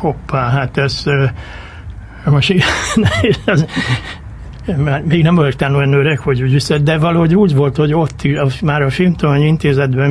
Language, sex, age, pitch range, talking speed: Hungarian, male, 60-79, 125-145 Hz, 135 wpm